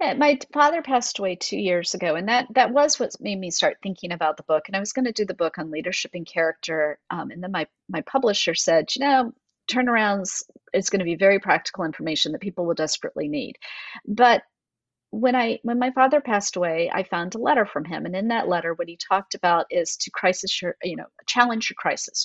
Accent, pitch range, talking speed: American, 175-235 Hz, 225 wpm